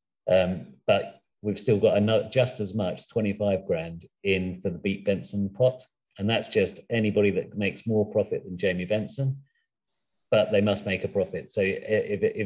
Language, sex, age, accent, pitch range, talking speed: English, male, 40-59, British, 95-115 Hz, 175 wpm